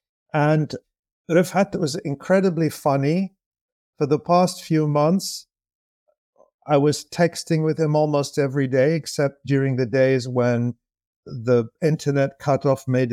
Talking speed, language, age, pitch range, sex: 125 wpm, English, 50-69, 125-160 Hz, male